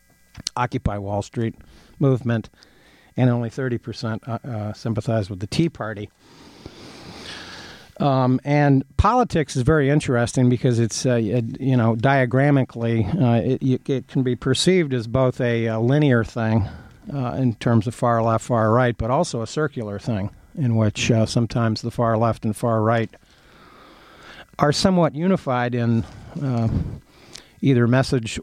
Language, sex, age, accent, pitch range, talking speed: English, male, 50-69, American, 115-135 Hz, 150 wpm